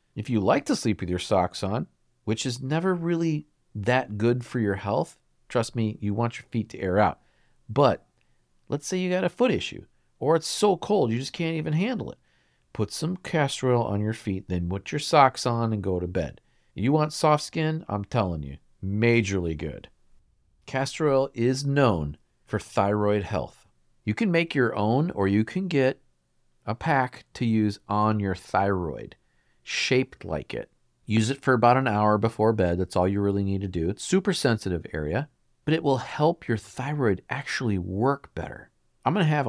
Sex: male